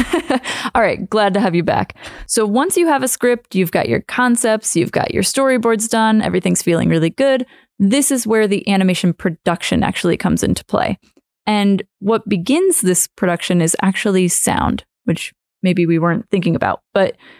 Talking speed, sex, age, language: 175 wpm, female, 20-39, English